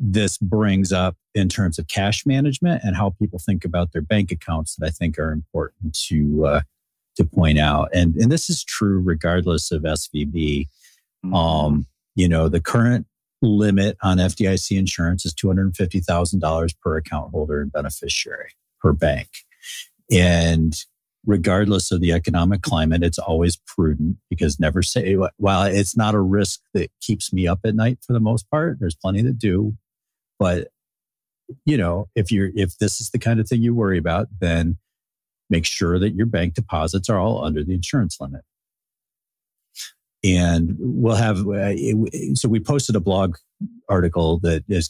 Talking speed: 165 wpm